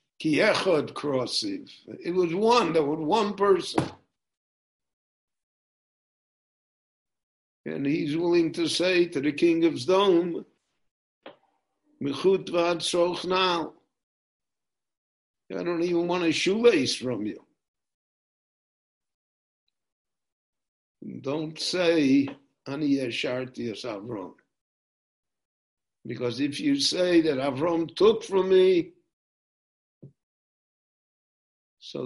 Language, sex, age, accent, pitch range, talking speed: English, male, 60-79, American, 130-180 Hz, 75 wpm